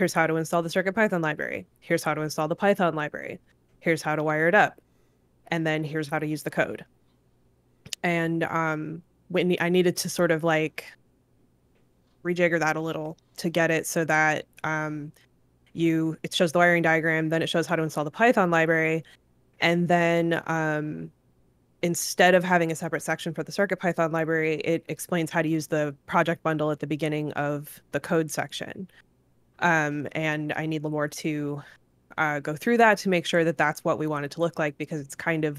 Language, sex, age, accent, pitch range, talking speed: English, female, 20-39, American, 150-175 Hz, 195 wpm